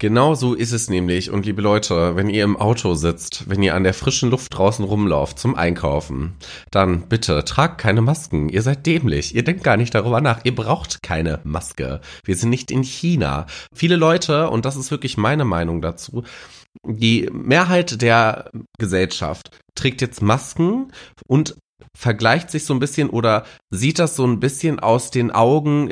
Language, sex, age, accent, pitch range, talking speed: German, male, 30-49, German, 95-135 Hz, 180 wpm